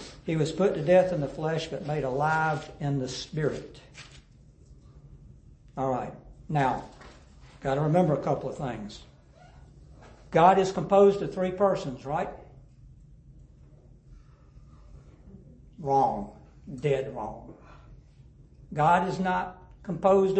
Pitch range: 135-180 Hz